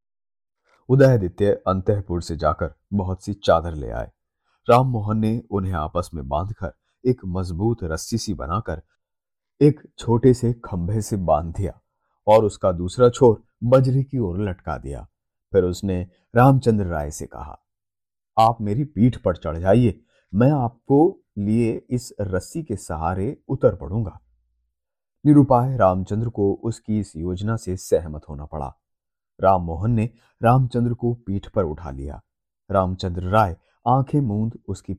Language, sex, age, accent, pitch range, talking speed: Hindi, male, 30-49, native, 85-115 Hz, 140 wpm